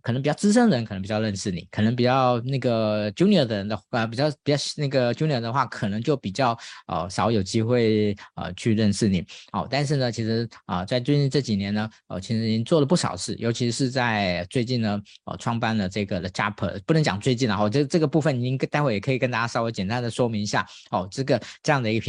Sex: male